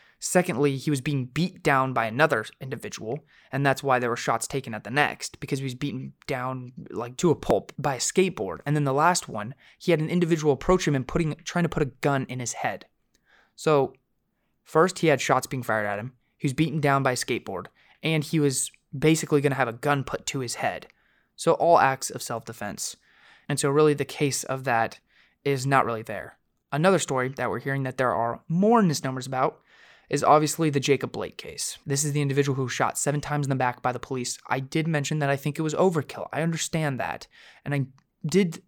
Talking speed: 225 wpm